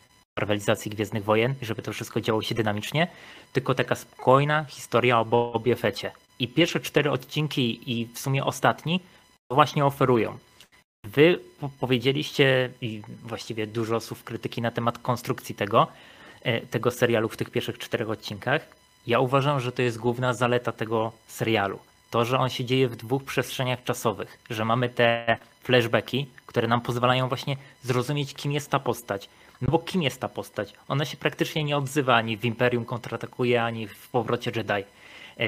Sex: male